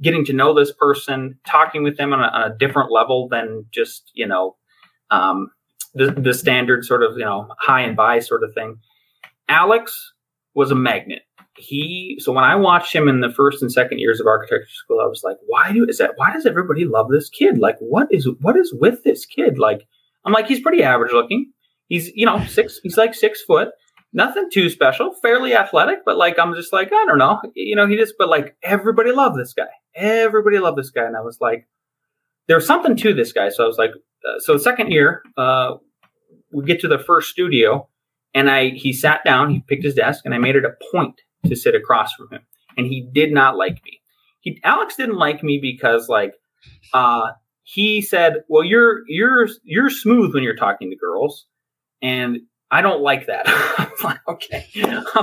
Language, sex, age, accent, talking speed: English, male, 30-49, American, 210 wpm